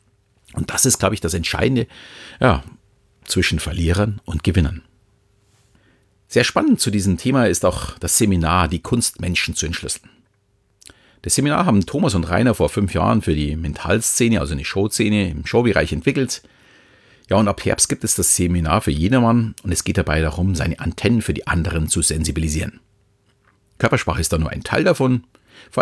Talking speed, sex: 170 wpm, male